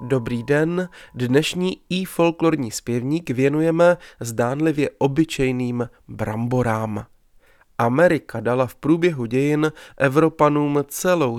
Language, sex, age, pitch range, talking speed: Czech, male, 30-49, 120-145 Hz, 90 wpm